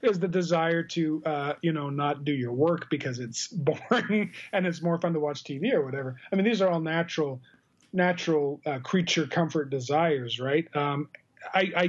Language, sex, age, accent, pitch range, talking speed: English, male, 40-59, American, 130-160 Hz, 185 wpm